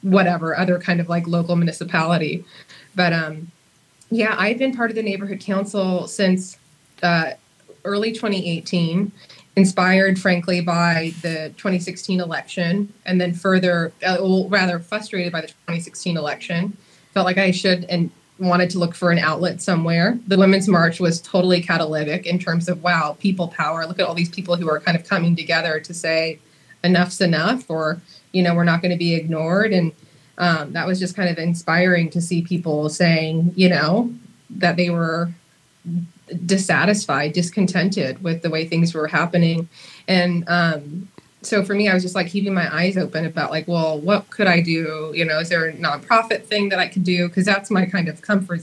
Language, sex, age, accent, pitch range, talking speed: English, female, 20-39, American, 165-185 Hz, 185 wpm